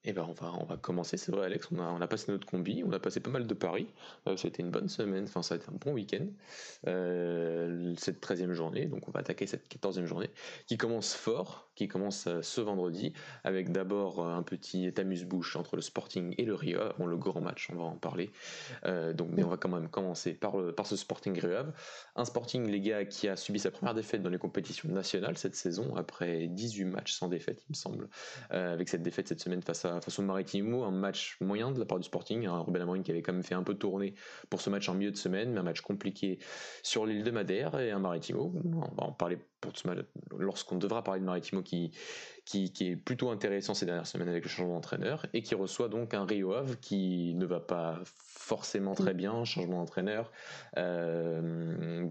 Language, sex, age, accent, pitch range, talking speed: French, male, 20-39, French, 85-100 Hz, 235 wpm